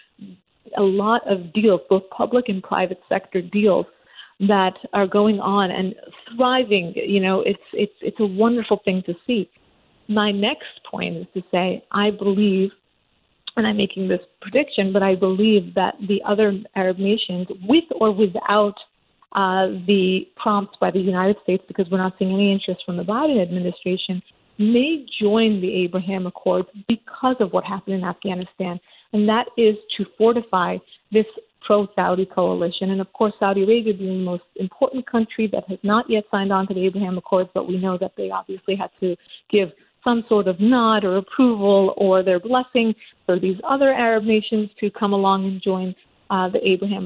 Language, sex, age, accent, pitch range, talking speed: English, female, 40-59, American, 190-220 Hz, 175 wpm